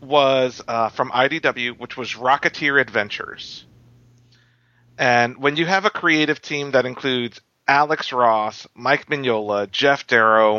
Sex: male